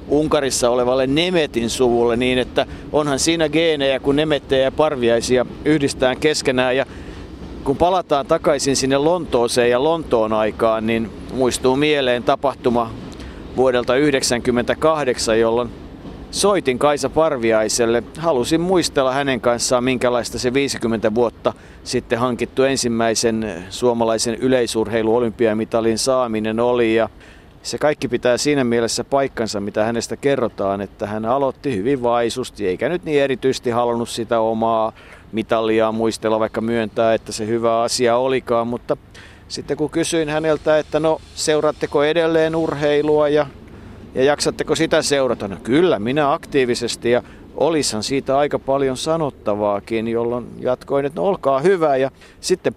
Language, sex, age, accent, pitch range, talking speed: Finnish, male, 50-69, native, 115-145 Hz, 130 wpm